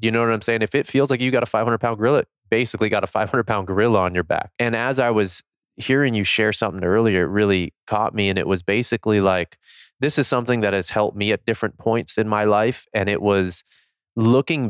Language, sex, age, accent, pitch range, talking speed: English, male, 20-39, American, 95-120 Hz, 235 wpm